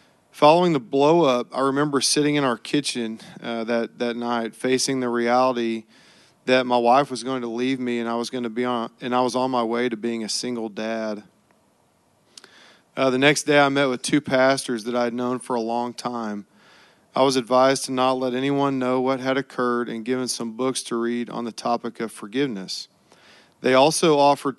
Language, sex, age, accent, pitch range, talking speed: English, male, 40-59, American, 120-135 Hz, 190 wpm